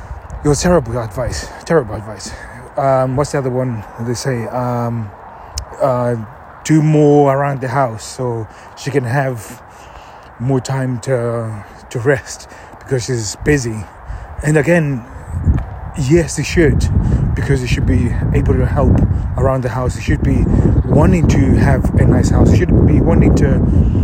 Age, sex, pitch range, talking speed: 30-49, male, 100-135 Hz, 150 wpm